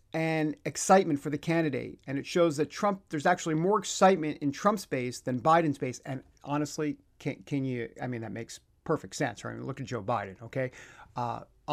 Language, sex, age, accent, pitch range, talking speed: English, male, 50-69, American, 125-165 Hz, 200 wpm